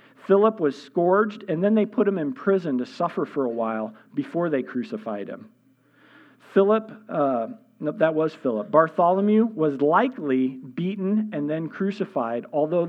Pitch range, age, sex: 135-205 Hz, 50-69, male